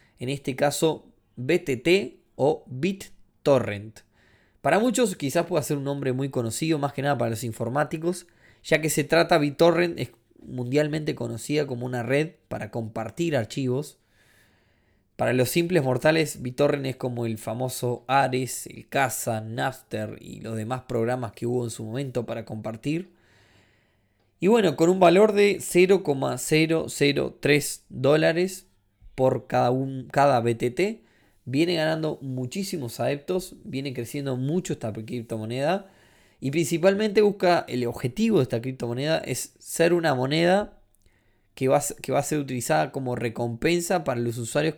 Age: 20-39